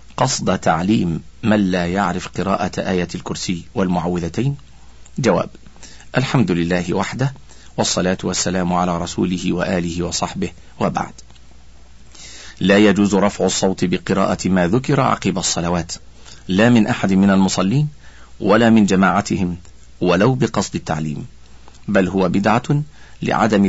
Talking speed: 110 wpm